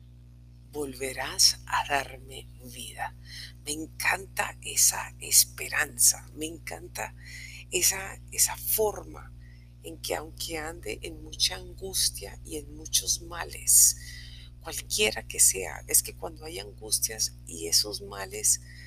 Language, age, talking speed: English, 50-69, 110 wpm